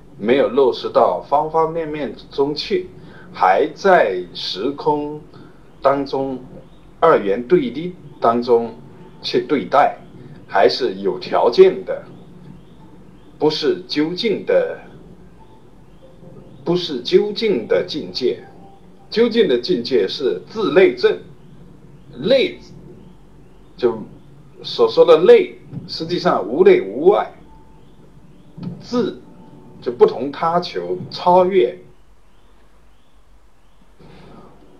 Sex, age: male, 50-69